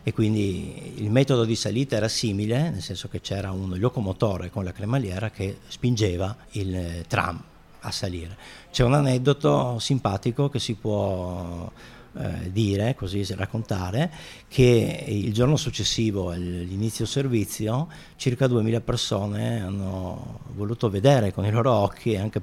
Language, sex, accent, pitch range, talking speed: Italian, male, native, 95-120 Hz, 140 wpm